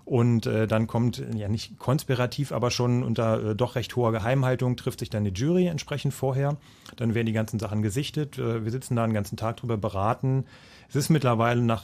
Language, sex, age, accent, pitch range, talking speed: German, male, 30-49, German, 110-130 Hz, 210 wpm